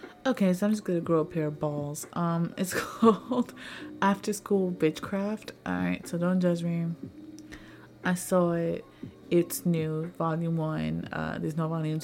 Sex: female